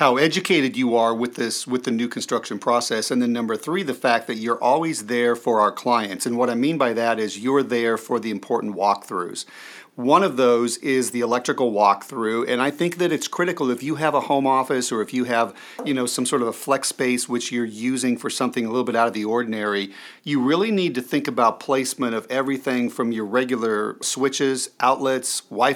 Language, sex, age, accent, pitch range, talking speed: English, male, 40-59, American, 120-135 Hz, 220 wpm